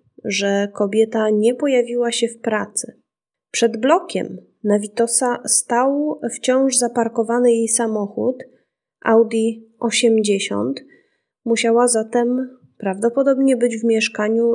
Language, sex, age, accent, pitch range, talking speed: Polish, female, 20-39, native, 215-250 Hz, 100 wpm